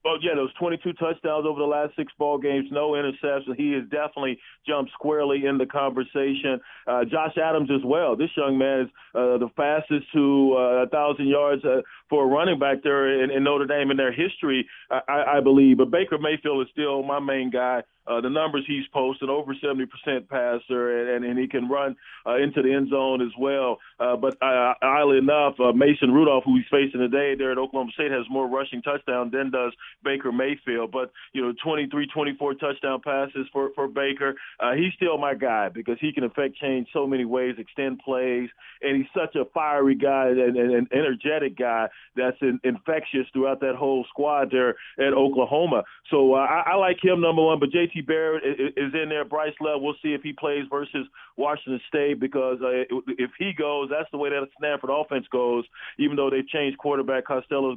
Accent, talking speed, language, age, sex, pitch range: American, 205 wpm, English, 40-59, male, 130-145 Hz